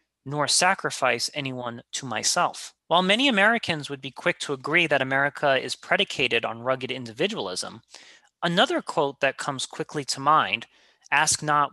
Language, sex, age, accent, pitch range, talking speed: English, male, 30-49, American, 135-170 Hz, 150 wpm